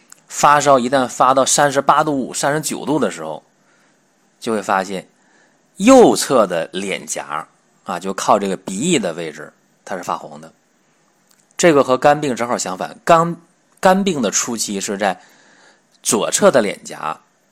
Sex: male